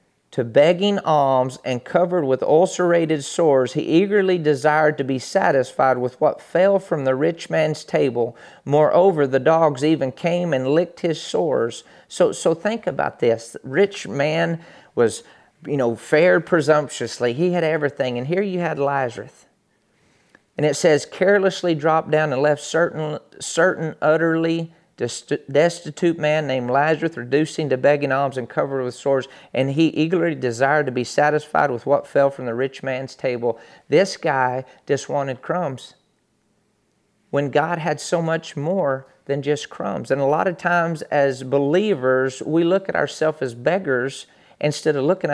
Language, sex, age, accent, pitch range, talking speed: English, male, 40-59, American, 135-170 Hz, 160 wpm